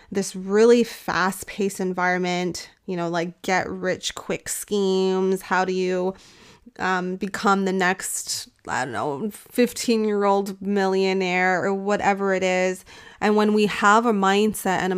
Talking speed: 150 wpm